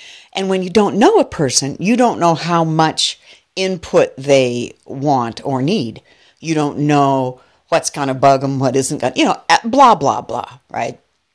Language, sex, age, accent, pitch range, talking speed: English, female, 60-79, American, 135-180 Hz, 185 wpm